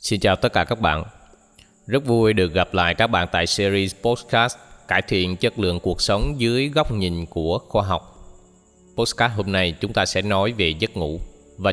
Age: 20-39